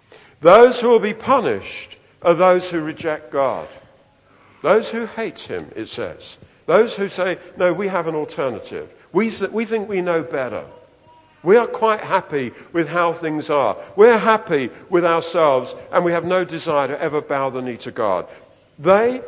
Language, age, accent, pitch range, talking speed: English, 50-69, British, 155-200 Hz, 170 wpm